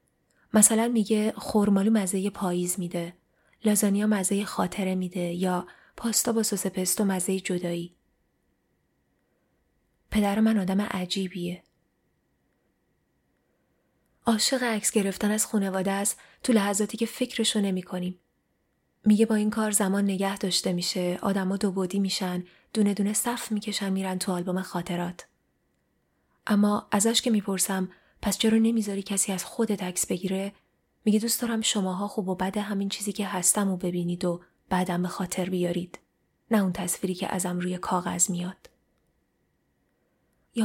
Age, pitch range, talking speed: 20-39, 180-210 Hz, 135 wpm